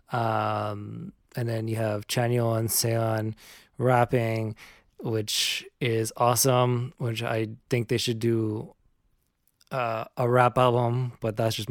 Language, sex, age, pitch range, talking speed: English, male, 20-39, 105-125 Hz, 130 wpm